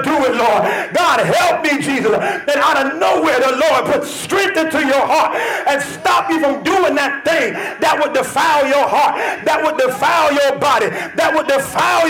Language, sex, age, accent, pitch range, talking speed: English, male, 40-59, American, 260-315 Hz, 190 wpm